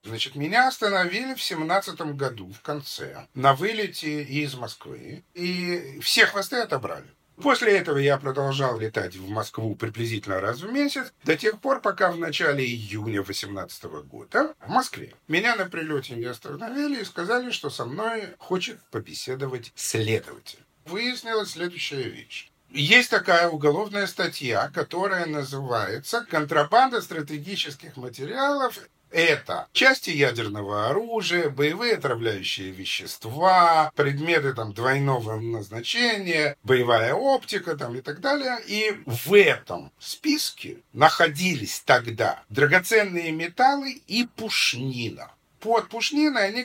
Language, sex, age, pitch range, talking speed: Russian, male, 50-69, 135-210 Hz, 120 wpm